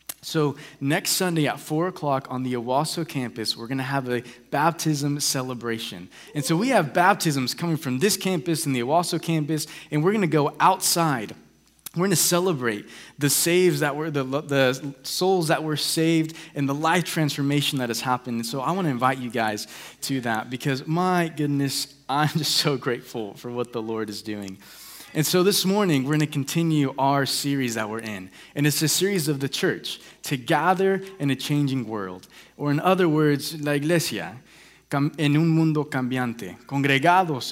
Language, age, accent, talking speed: English, 20-39, American, 185 wpm